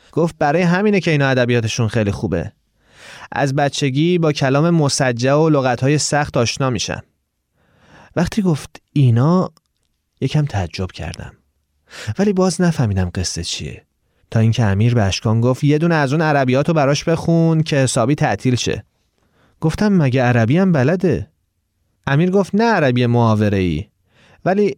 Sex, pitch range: male, 110-160 Hz